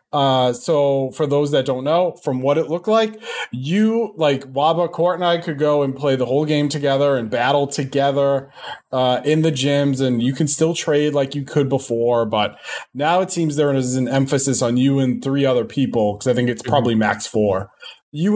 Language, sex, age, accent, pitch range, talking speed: English, male, 20-39, American, 120-150 Hz, 210 wpm